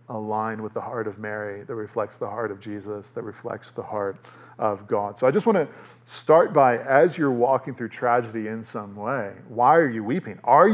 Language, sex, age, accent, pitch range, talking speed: English, male, 40-59, American, 115-150 Hz, 210 wpm